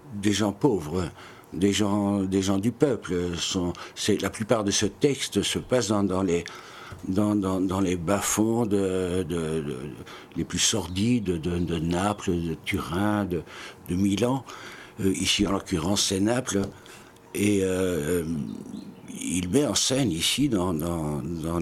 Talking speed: 160 wpm